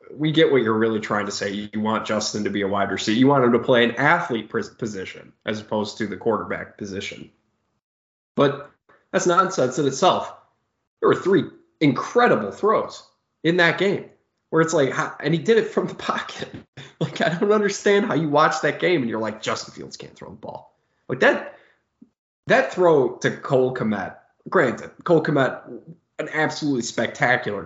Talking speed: 180 wpm